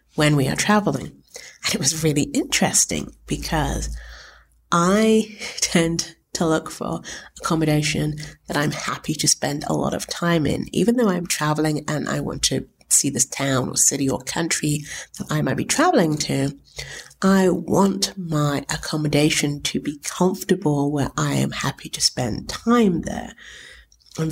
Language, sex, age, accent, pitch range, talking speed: English, female, 30-49, British, 145-185 Hz, 155 wpm